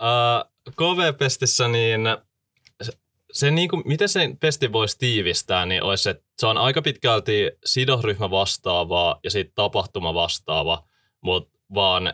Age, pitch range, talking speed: 20-39, 90-115 Hz, 135 wpm